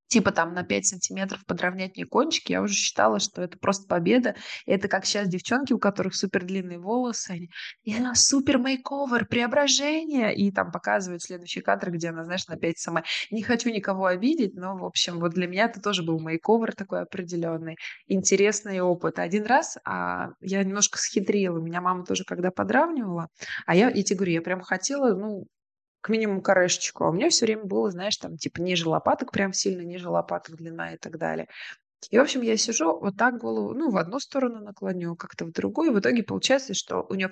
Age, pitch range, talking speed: 20-39, 180-230 Hz, 195 wpm